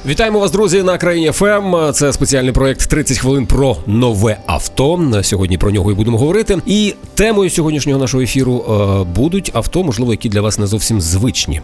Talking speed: 175 wpm